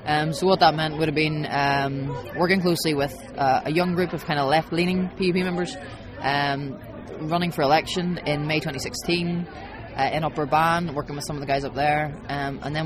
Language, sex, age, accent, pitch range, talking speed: English, female, 20-39, Irish, 145-170 Hz, 210 wpm